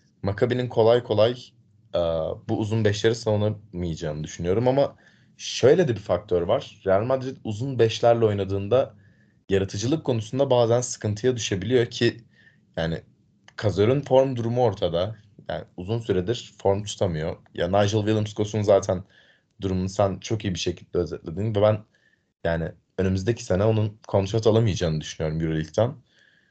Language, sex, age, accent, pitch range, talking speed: Turkish, male, 30-49, native, 95-120 Hz, 130 wpm